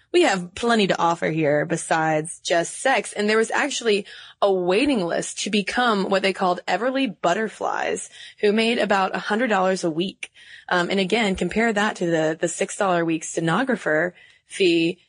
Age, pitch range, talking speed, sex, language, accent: 20-39, 175-225 Hz, 175 wpm, female, English, American